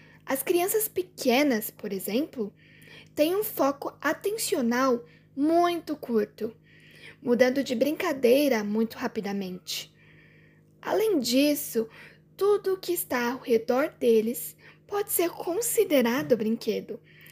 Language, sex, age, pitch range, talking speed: Portuguese, female, 10-29, 225-295 Hz, 100 wpm